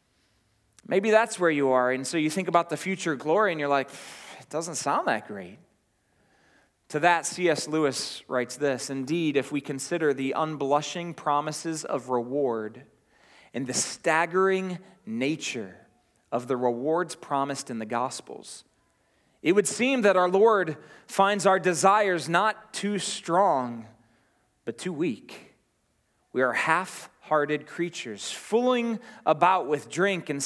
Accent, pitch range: American, 135-190 Hz